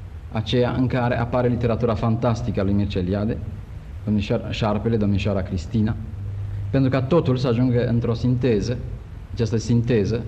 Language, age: Romanian, 50-69